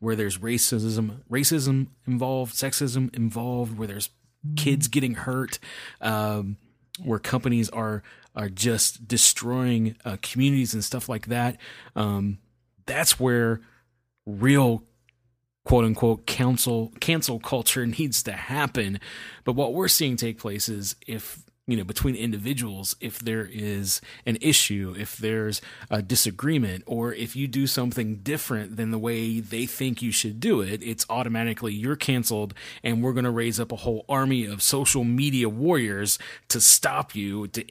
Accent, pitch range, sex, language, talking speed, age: American, 110-130 Hz, male, English, 150 wpm, 30-49